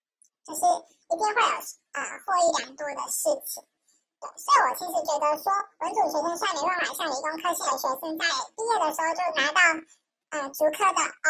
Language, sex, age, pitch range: Chinese, male, 10-29, 290-355 Hz